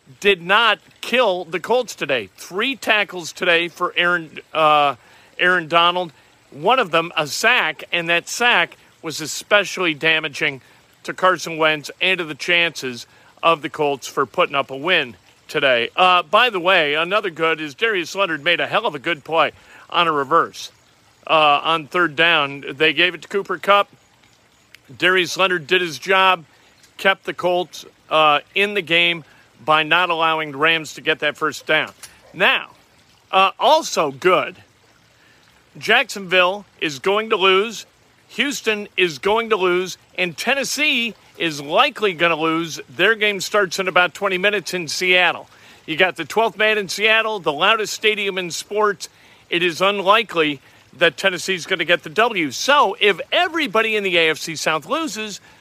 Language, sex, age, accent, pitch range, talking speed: English, male, 40-59, American, 155-200 Hz, 165 wpm